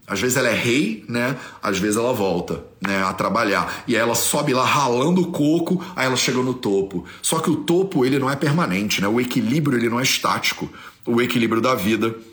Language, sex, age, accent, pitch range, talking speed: Portuguese, male, 40-59, Brazilian, 115-155 Hz, 220 wpm